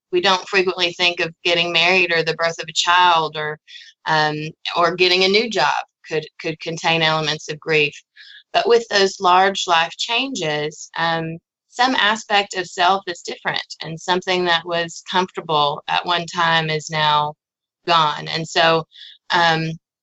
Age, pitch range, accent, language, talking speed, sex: 20-39, 165-195 Hz, American, English, 160 wpm, female